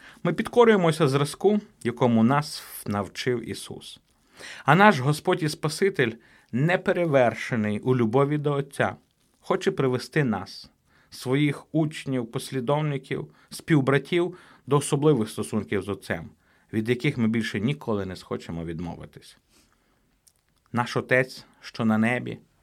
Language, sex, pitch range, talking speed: Ukrainian, male, 105-135 Hz, 110 wpm